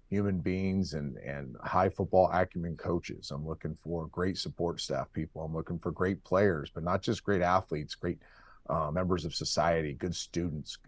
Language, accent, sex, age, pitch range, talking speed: English, American, male, 40-59, 80-95 Hz, 175 wpm